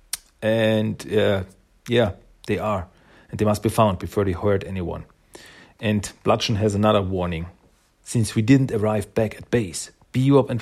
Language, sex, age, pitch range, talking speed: German, male, 40-59, 95-125 Hz, 160 wpm